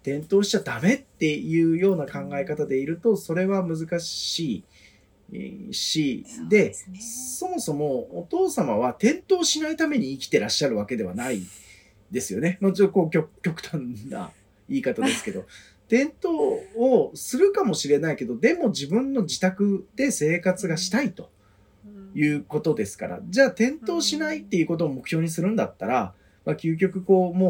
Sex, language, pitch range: male, Japanese, 145-230 Hz